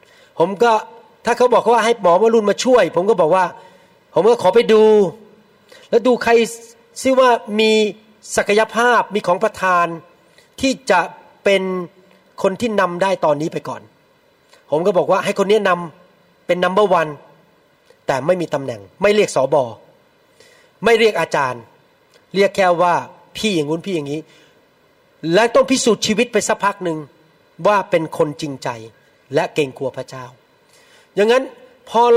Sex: male